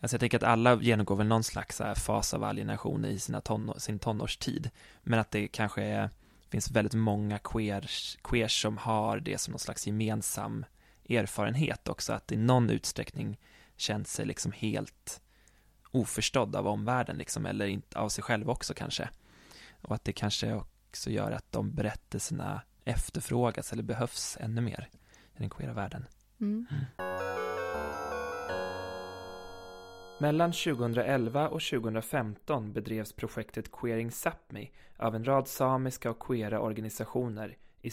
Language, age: Swedish, 20-39